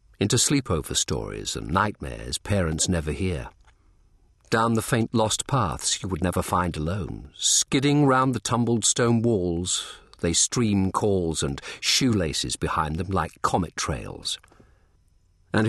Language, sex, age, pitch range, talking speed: English, male, 50-69, 85-110 Hz, 135 wpm